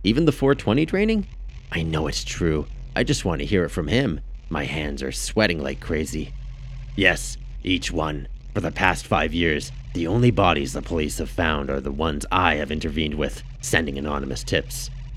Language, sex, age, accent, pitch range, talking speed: English, male, 40-59, American, 75-125 Hz, 185 wpm